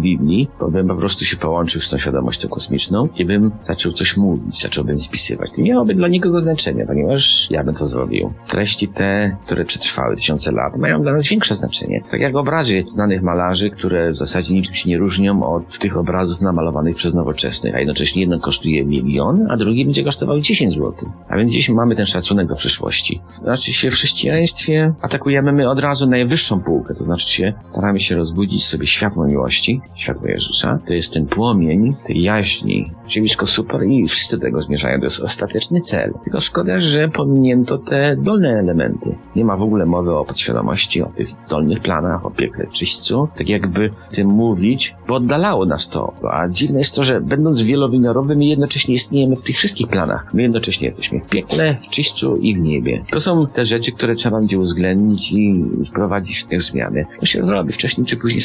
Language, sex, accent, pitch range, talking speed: Polish, male, native, 85-130 Hz, 190 wpm